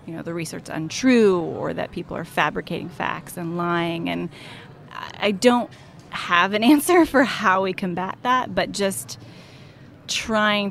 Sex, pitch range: female, 165-200 Hz